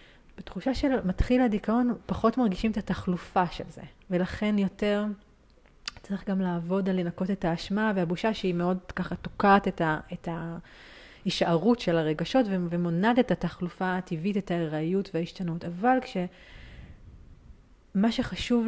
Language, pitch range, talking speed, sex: Hebrew, 180-225 Hz, 130 wpm, female